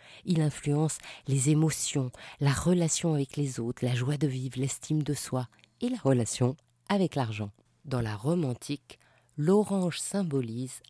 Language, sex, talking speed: French, female, 150 wpm